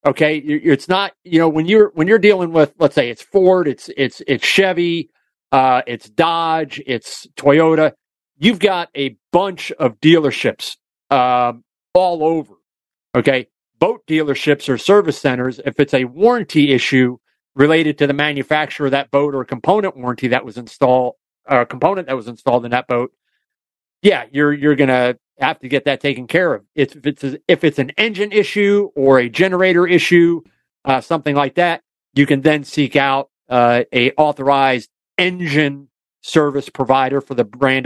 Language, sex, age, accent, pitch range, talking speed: English, male, 40-59, American, 130-165 Hz, 170 wpm